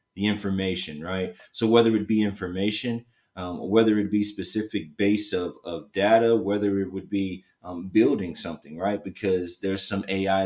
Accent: American